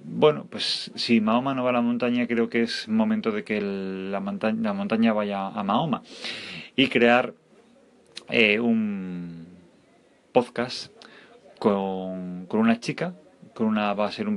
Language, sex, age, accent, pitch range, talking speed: English, male, 30-49, Spanish, 105-125 Hz, 160 wpm